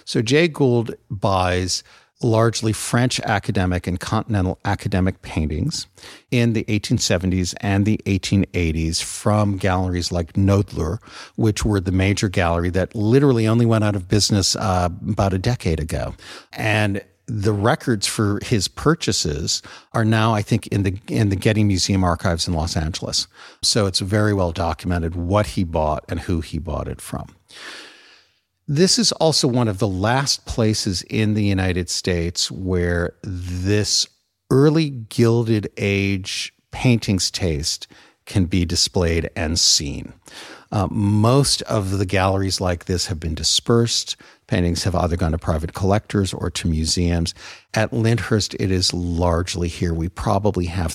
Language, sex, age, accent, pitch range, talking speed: English, male, 50-69, American, 90-110 Hz, 145 wpm